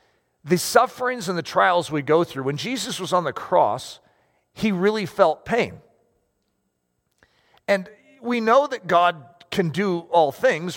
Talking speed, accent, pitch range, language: 150 wpm, American, 150-220 Hz, English